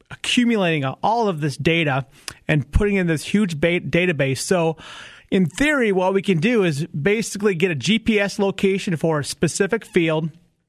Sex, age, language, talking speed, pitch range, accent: male, 30-49, English, 155 wpm, 150-180 Hz, American